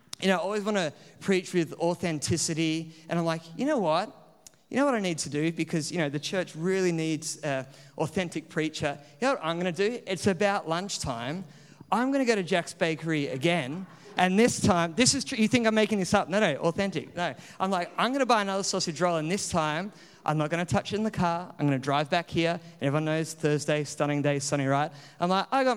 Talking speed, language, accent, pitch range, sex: 240 wpm, English, Australian, 155-210 Hz, male